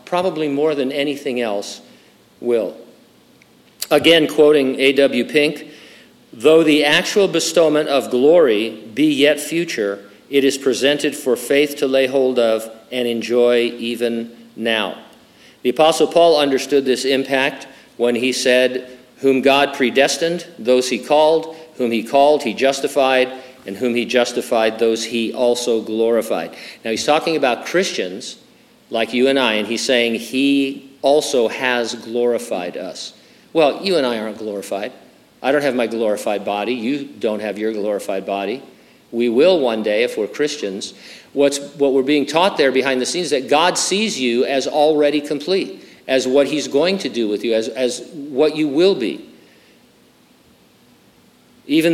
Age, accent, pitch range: 50-69, American, 120-150 Hz